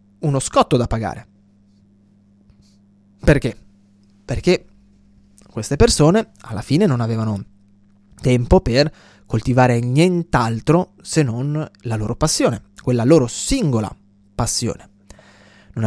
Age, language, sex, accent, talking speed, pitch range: 20-39, Italian, male, native, 100 wpm, 100-145 Hz